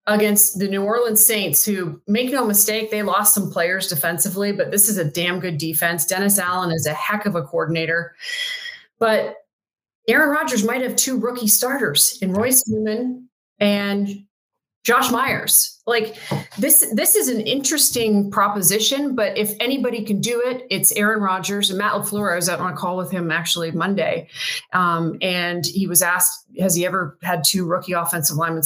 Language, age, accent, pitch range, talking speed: English, 30-49, American, 180-220 Hz, 175 wpm